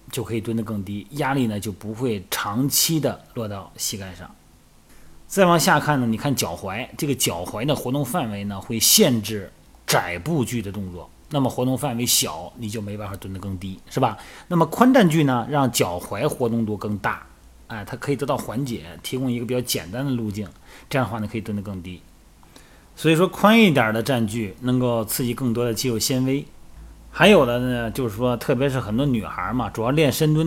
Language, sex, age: Chinese, male, 30-49